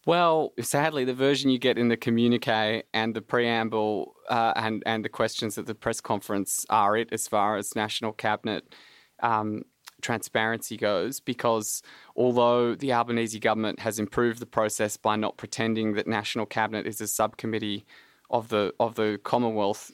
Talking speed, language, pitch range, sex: 160 wpm, English, 105-120 Hz, male